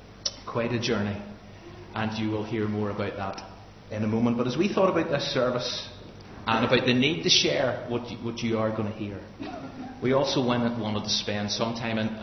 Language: English